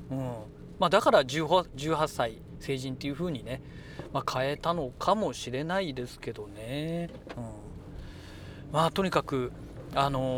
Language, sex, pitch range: Japanese, male, 130-165 Hz